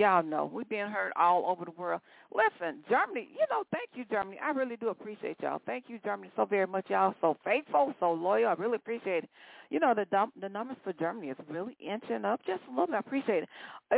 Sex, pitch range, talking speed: female, 185-235 Hz, 240 wpm